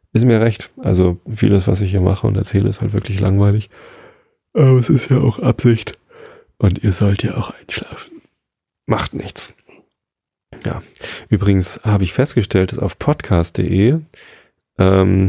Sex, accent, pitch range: male, German, 95-120 Hz